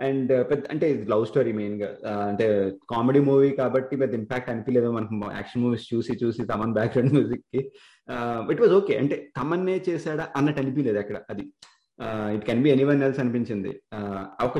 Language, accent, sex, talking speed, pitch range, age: Telugu, native, male, 175 wpm, 115-140 Hz, 20-39